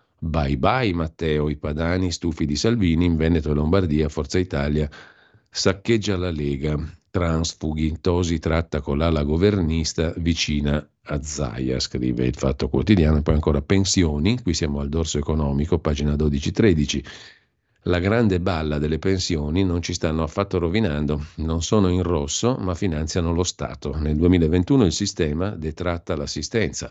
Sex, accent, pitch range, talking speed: male, native, 75-90 Hz, 145 wpm